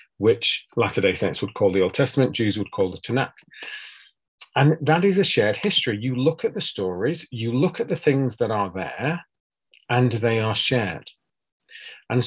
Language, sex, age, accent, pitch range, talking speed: English, male, 40-59, British, 105-155 Hz, 180 wpm